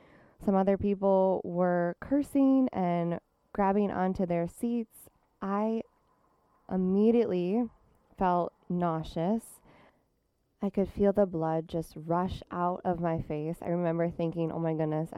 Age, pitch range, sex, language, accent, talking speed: 20-39, 165-190 Hz, female, English, American, 125 wpm